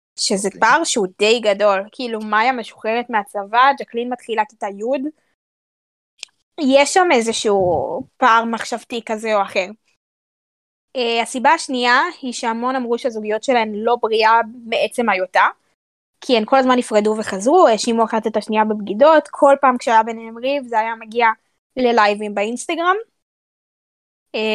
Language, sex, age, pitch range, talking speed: Hebrew, female, 20-39, 225-275 Hz, 135 wpm